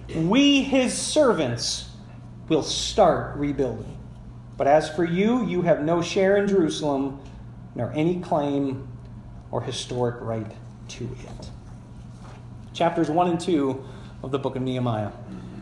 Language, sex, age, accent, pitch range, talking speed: English, male, 40-59, American, 140-205 Hz, 125 wpm